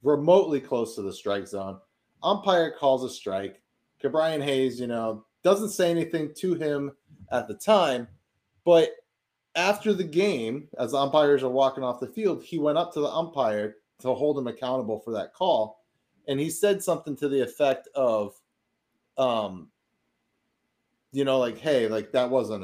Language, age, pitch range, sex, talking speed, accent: English, 30-49, 115-165 Hz, male, 165 wpm, American